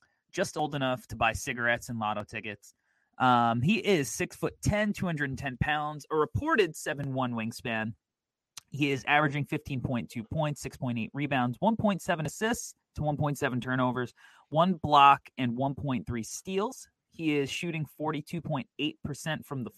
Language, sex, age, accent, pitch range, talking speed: English, male, 30-49, American, 120-155 Hz, 130 wpm